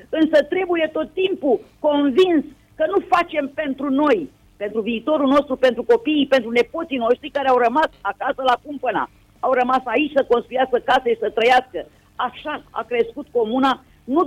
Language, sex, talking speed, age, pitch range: Romanian, female, 160 wpm, 40-59, 250-305 Hz